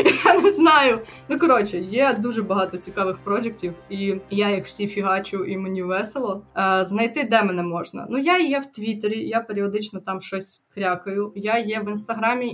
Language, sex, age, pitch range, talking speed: Ukrainian, female, 20-39, 190-240 Hz, 170 wpm